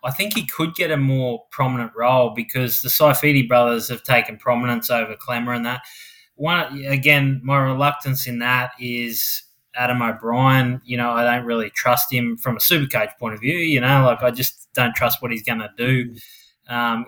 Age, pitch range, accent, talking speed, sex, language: 20-39, 120-140 Hz, Australian, 195 wpm, male, English